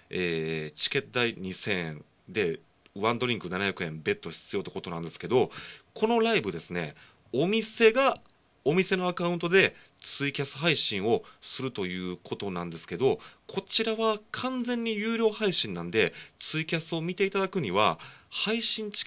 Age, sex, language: 30-49, male, Japanese